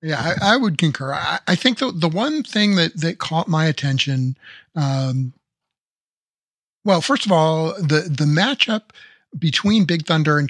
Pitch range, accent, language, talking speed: 140-170 Hz, American, English, 165 wpm